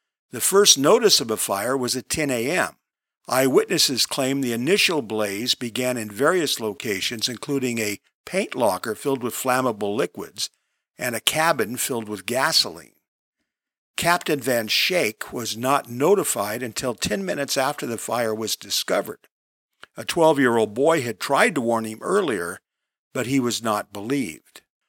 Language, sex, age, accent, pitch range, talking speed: English, male, 50-69, American, 110-145 Hz, 145 wpm